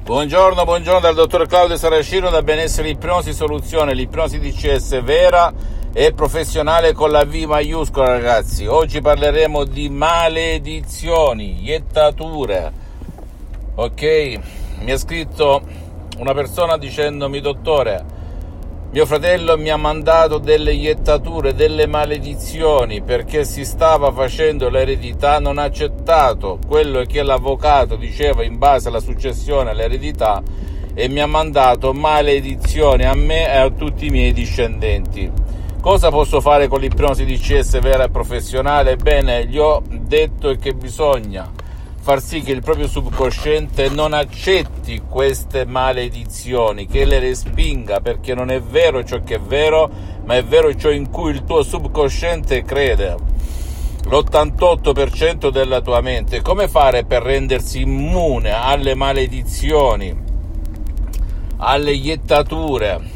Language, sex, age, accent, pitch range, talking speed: Italian, male, 50-69, native, 110-155 Hz, 125 wpm